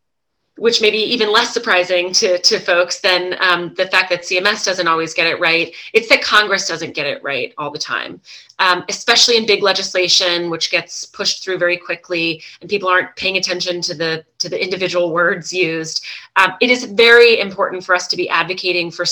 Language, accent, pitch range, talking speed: English, American, 175-205 Hz, 200 wpm